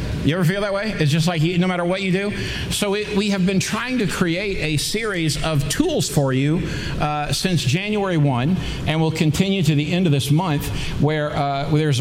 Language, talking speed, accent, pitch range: English, 225 wpm, American, 135-160 Hz